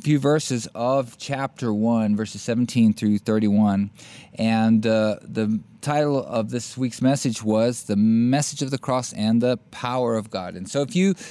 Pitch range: 110-150 Hz